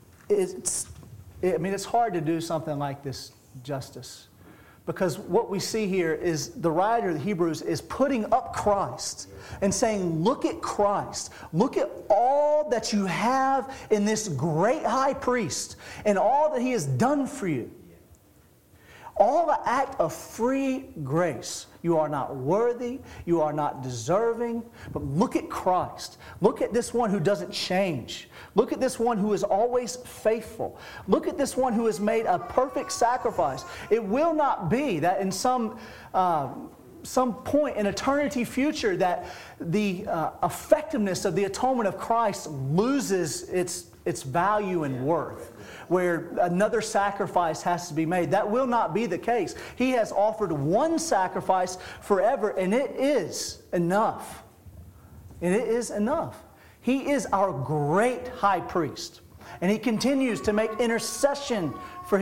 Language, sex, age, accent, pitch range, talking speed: English, male, 40-59, American, 175-250 Hz, 155 wpm